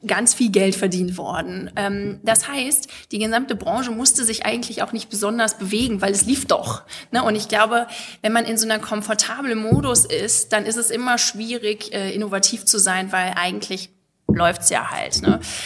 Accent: German